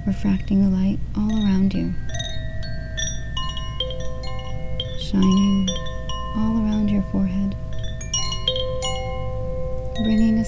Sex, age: female, 40-59